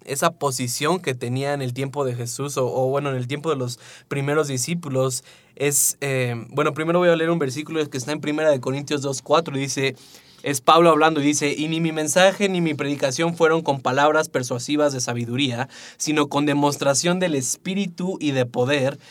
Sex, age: male, 20-39